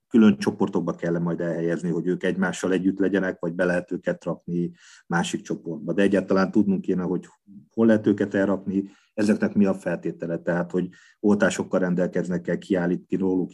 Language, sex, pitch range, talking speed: Hungarian, male, 85-100 Hz, 170 wpm